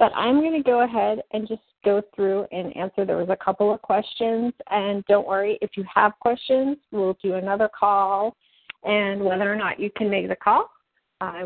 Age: 40-59